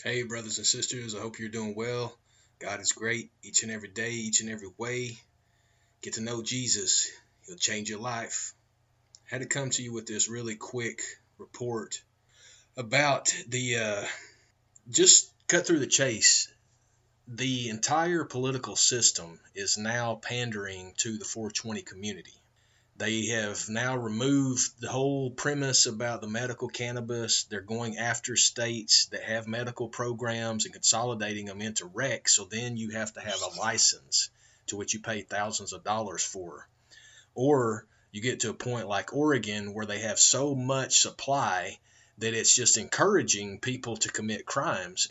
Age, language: 30-49, English